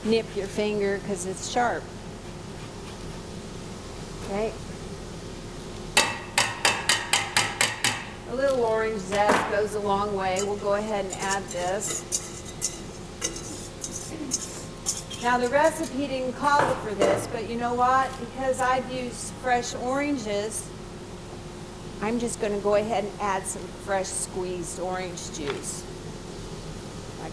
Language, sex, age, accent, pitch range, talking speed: English, female, 50-69, American, 190-240 Hz, 115 wpm